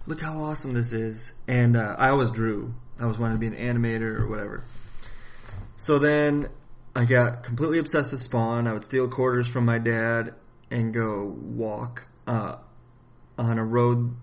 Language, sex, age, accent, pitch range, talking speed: English, male, 30-49, American, 110-120 Hz, 175 wpm